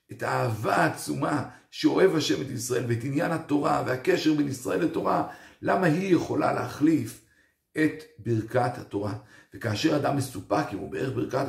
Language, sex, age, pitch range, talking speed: Hebrew, male, 50-69, 115-155 Hz, 145 wpm